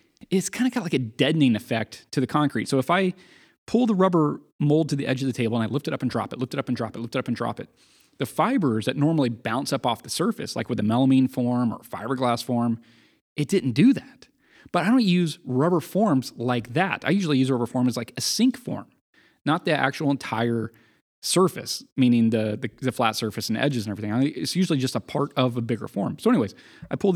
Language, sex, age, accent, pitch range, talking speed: English, male, 30-49, American, 120-165 Hz, 245 wpm